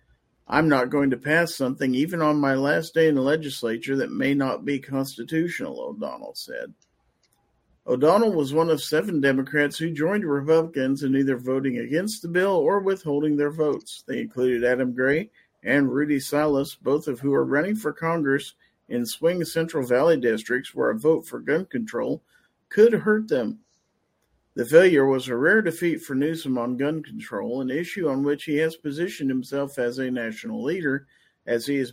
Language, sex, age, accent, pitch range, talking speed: English, male, 50-69, American, 130-160 Hz, 175 wpm